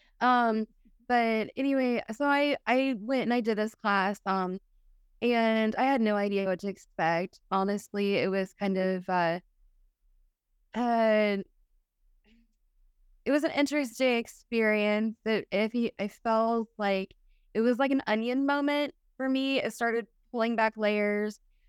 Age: 20-39